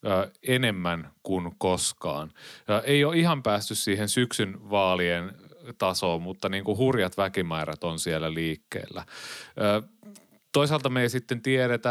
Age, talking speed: 30-49, 110 wpm